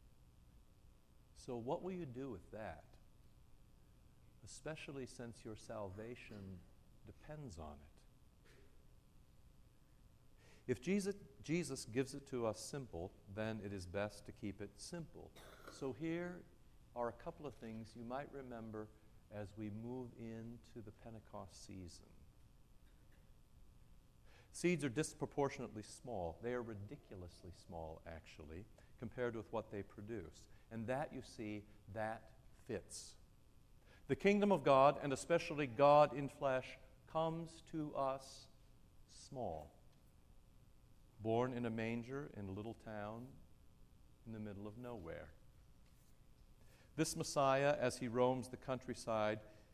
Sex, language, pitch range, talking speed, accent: male, English, 105-135 Hz, 120 wpm, American